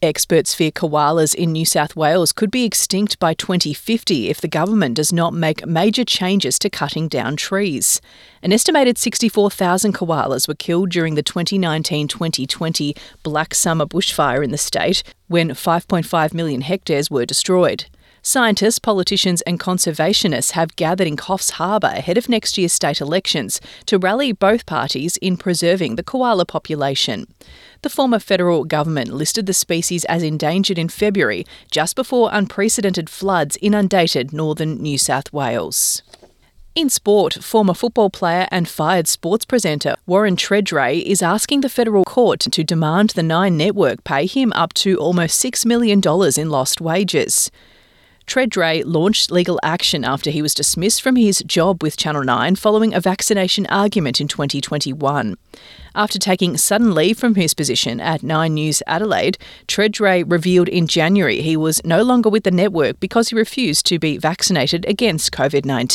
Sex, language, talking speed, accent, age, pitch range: female, English, 155 wpm, Australian, 30-49, 155-205 Hz